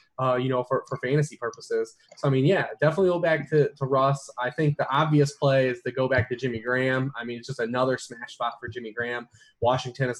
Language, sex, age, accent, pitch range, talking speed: English, male, 20-39, American, 125-150 Hz, 240 wpm